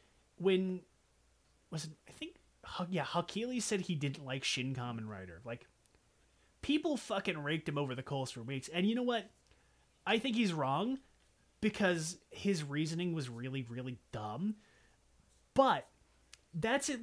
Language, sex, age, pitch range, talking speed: English, male, 30-49, 130-205 Hz, 150 wpm